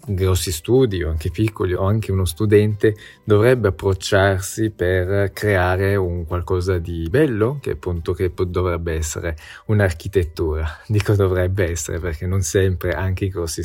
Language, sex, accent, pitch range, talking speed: Italian, male, native, 90-110 Hz, 135 wpm